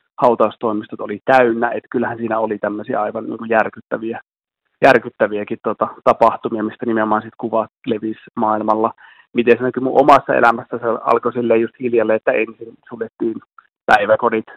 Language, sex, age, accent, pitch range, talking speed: Finnish, male, 30-49, native, 110-120 Hz, 135 wpm